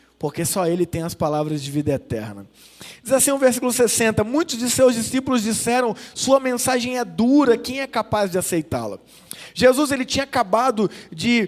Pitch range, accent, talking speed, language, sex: 210-255 Hz, Brazilian, 175 wpm, Portuguese, male